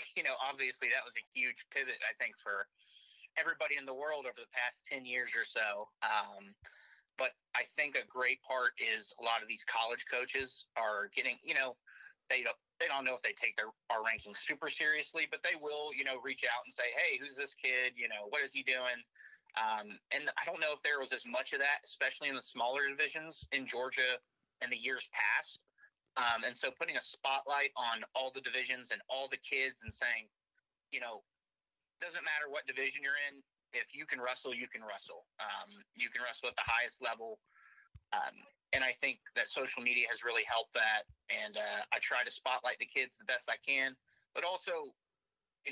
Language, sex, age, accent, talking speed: English, male, 30-49, American, 210 wpm